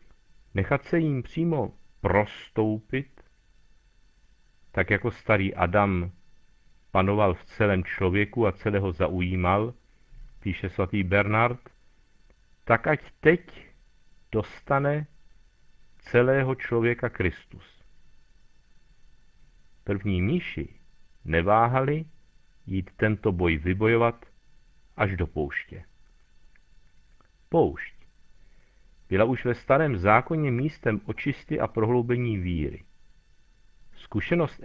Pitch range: 100-135 Hz